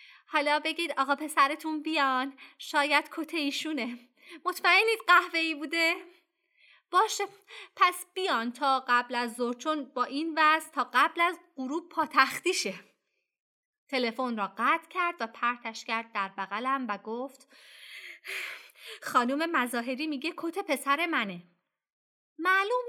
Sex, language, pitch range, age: female, Persian, 220-320 Hz, 30-49